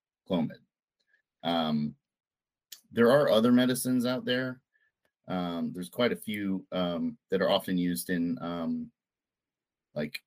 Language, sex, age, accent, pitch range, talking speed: English, male, 30-49, American, 85-120 Hz, 125 wpm